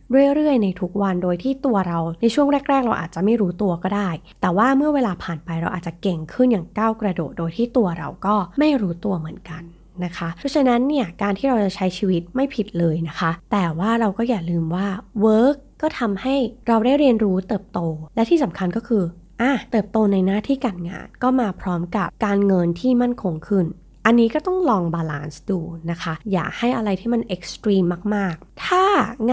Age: 20-39